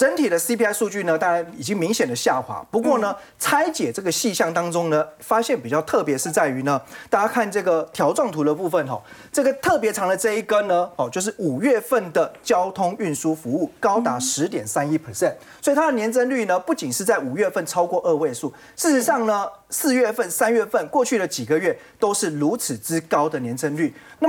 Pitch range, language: 165-250 Hz, Chinese